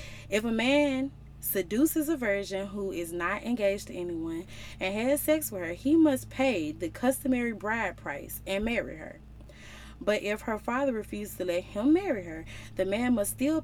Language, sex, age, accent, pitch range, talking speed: English, female, 20-39, American, 180-265 Hz, 180 wpm